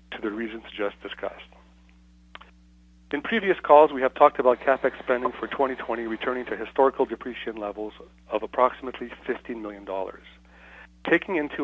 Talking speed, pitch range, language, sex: 140 wpm, 100-130 Hz, English, male